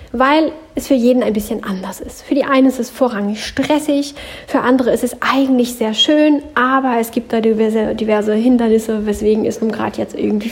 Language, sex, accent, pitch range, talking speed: German, female, German, 210-260 Hz, 200 wpm